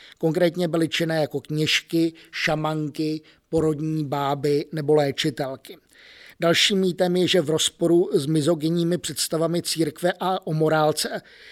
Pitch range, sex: 155-165 Hz, male